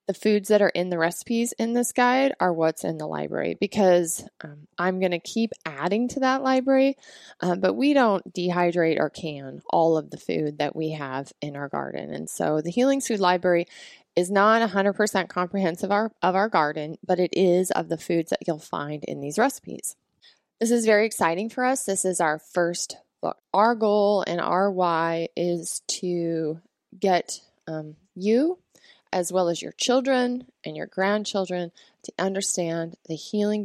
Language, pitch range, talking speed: English, 165-215 Hz, 180 wpm